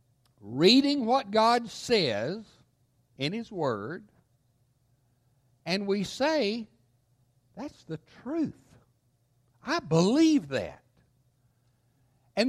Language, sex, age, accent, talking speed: English, male, 60-79, American, 80 wpm